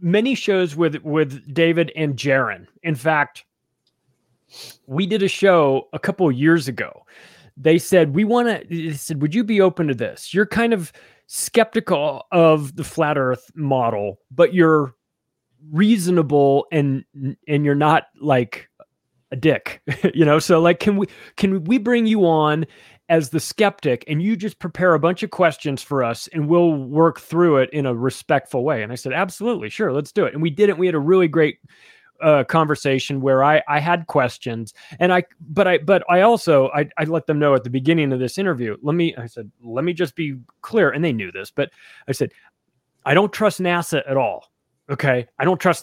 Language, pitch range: English, 140-180 Hz